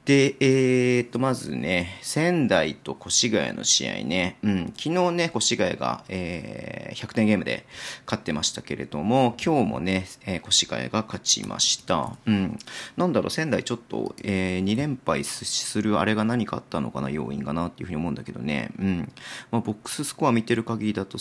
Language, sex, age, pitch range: Japanese, male, 40-59, 95-115 Hz